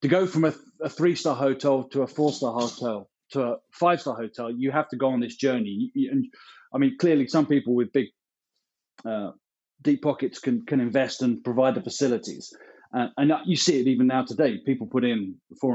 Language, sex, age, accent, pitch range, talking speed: English, male, 30-49, British, 115-145 Hz, 205 wpm